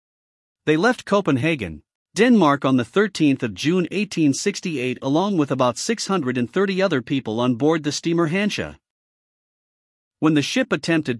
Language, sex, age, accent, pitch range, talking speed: English, male, 50-69, American, 130-185 Hz, 125 wpm